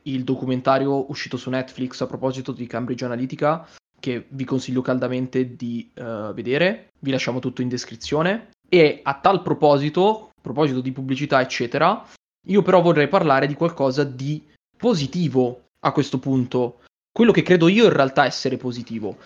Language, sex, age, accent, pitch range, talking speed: Italian, male, 20-39, native, 130-160 Hz, 155 wpm